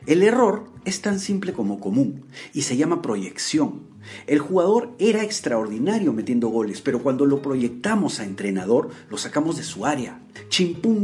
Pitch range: 140-220 Hz